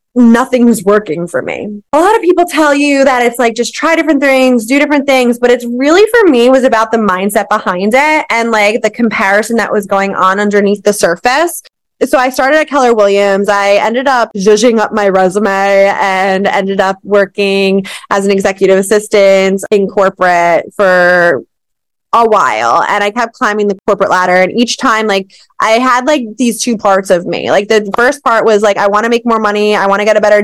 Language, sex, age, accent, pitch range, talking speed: English, female, 20-39, American, 195-240 Hz, 205 wpm